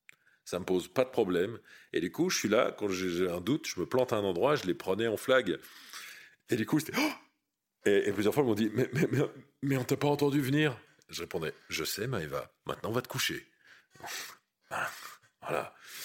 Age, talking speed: 40-59, 230 wpm